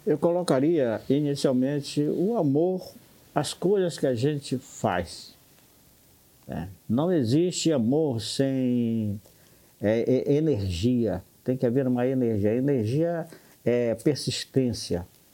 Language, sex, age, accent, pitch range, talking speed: Portuguese, male, 60-79, Brazilian, 110-155 Hz, 95 wpm